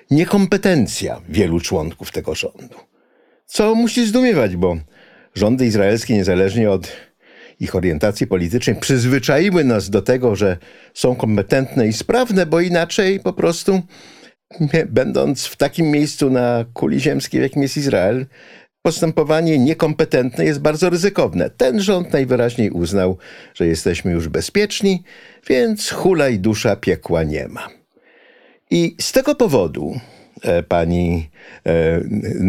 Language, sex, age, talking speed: Polish, male, 50-69, 125 wpm